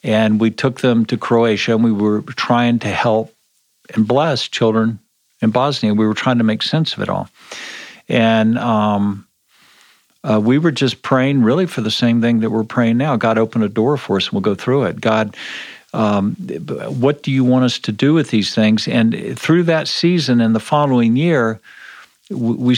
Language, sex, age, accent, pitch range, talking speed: English, male, 50-69, American, 110-130 Hz, 195 wpm